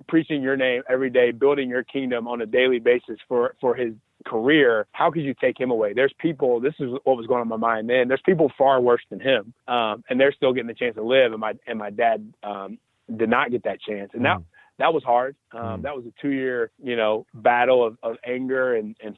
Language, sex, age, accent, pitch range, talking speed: English, male, 20-39, American, 115-130 Hz, 245 wpm